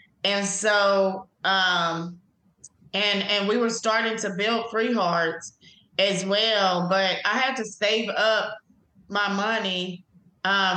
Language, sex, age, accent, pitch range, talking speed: English, female, 20-39, American, 185-210 Hz, 130 wpm